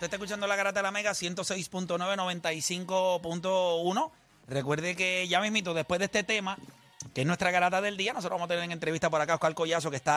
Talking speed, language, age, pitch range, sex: 220 wpm, Spanish, 30-49, 155-195 Hz, male